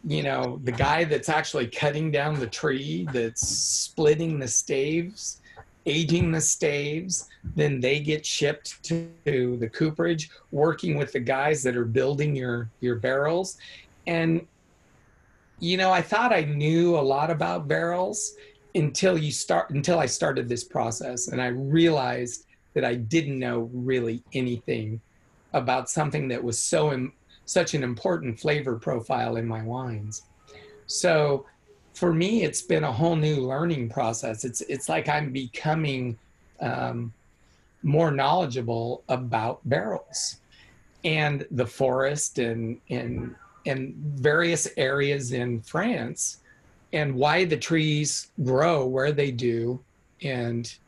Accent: American